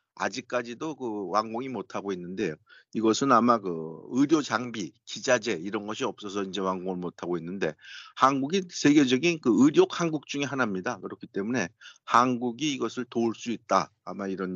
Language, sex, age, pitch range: Korean, male, 50-69, 100-130 Hz